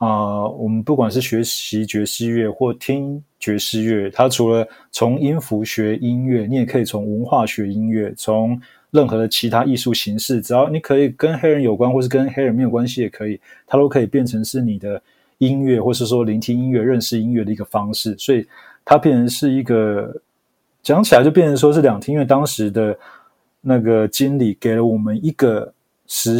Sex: male